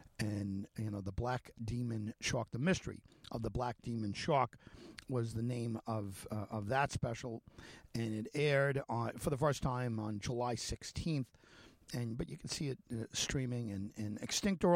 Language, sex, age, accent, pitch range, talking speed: English, male, 50-69, American, 110-135 Hz, 185 wpm